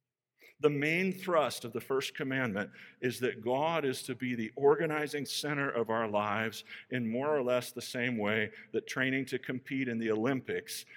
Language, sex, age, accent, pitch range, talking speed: English, male, 50-69, American, 110-140 Hz, 180 wpm